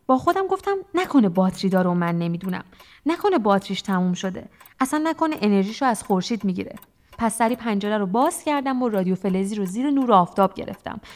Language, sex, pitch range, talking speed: Persian, female, 195-260 Hz, 170 wpm